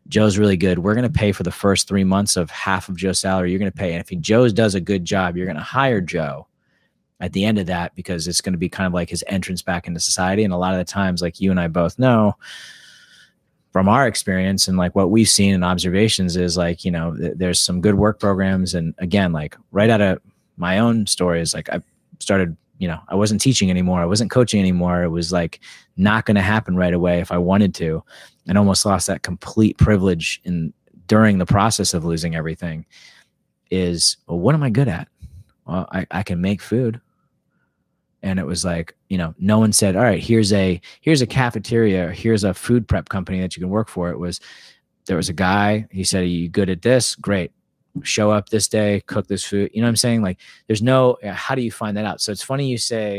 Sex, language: male, English